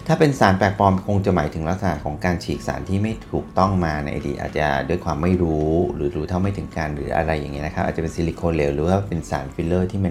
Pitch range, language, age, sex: 75-95 Hz, Thai, 30-49, male